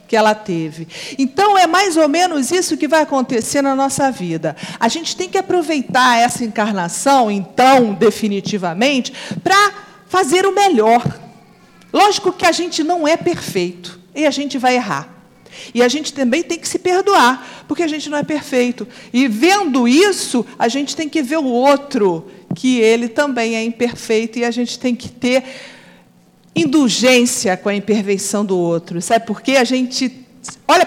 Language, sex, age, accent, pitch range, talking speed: Portuguese, female, 50-69, Brazilian, 225-310 Hz, 170 wpm